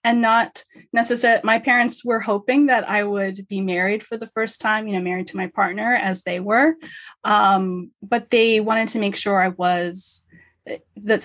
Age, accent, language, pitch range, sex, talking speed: 20-39, American, English, 195-235 Hz, female, 185 wpm